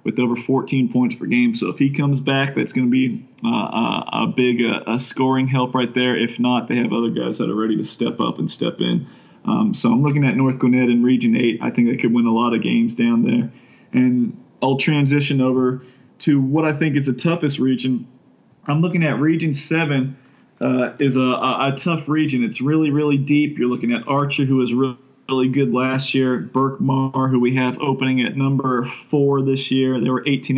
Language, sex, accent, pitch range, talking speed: English, male, American, 125-145 Hz, 220 wpm